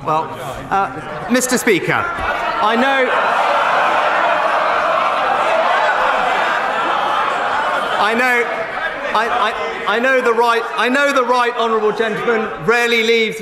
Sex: male